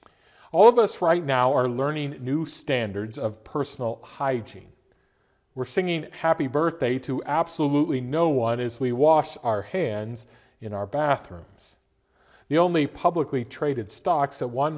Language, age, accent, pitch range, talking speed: English, 40-59, American, 115-150 Hz, 140 wpm